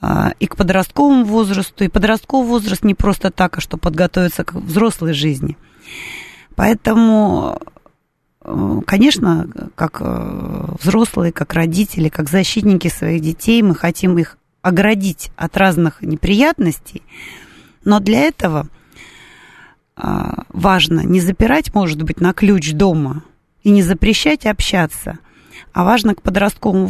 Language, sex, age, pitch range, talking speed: Russian, female, 30-49, 175-225 Hz, 115 wpm